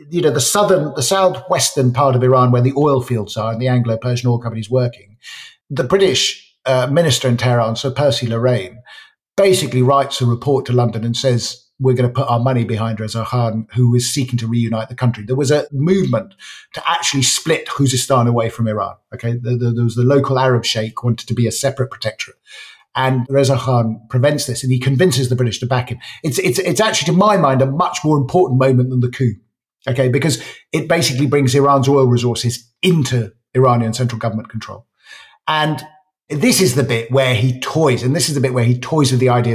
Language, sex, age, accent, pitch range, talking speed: English, male, 50-69, British, 120-145 Hz, 210 wpm